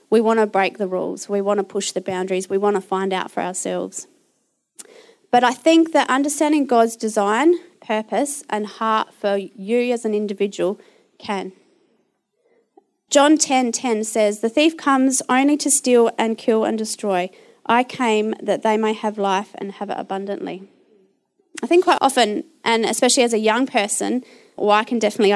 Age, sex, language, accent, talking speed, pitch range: 30-49, female, English, Australian, 170 wpm, 200-265 Hz